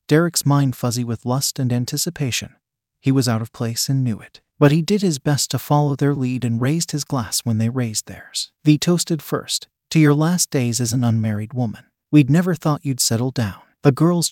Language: English